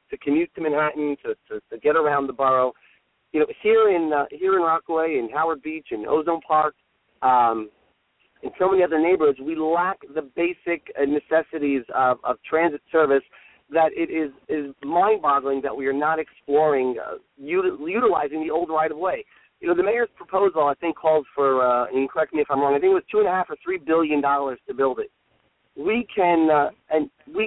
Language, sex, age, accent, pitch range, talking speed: English, male, 40-59, American, 140-180 Hz, 190 wpm